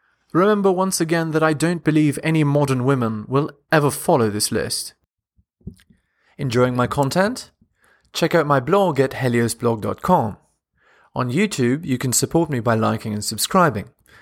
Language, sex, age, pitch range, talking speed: English, male, 30-49, 125-170 Hz, 145 wpm